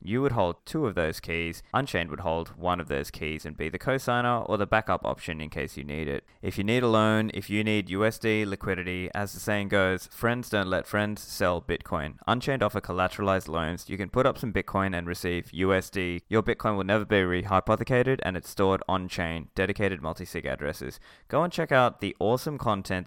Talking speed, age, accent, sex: 210 wpm, 20-39, Australian, male